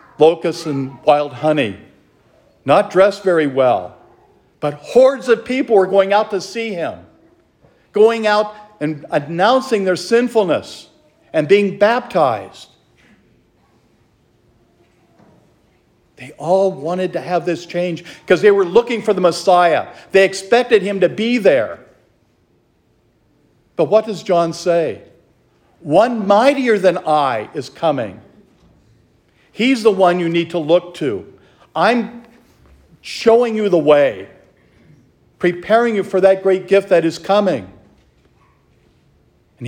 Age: 50-69